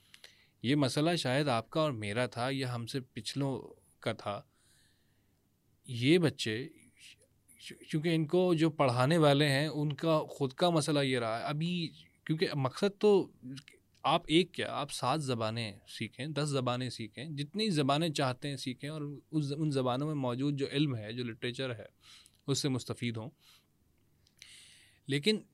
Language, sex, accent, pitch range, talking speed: English, male, Indian, 120-150 Hz, 145 wpm